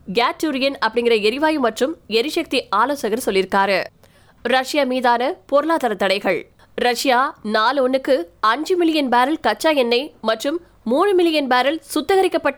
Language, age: Tamil, 20-39